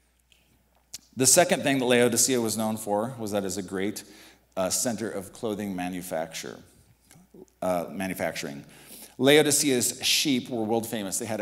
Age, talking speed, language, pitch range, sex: 50-69, 145 wpm, English, 95-115 Hz, male